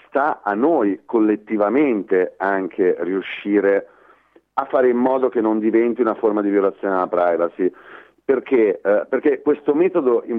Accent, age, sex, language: native, 40-59, male, Italian